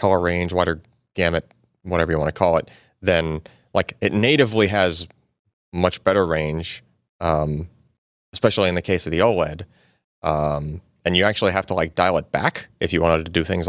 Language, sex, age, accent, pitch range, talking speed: English, male, 30-49, American, 80-100 Hz, 185 wpm